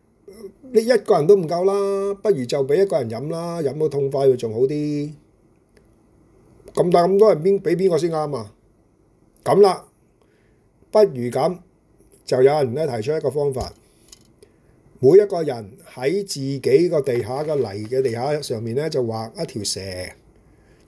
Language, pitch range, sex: Chinese, 125-190 Hz, male